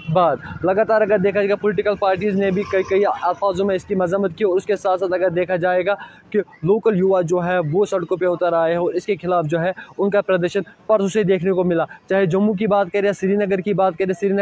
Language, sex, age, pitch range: Urdu, male, 20-39, 180-200 Hz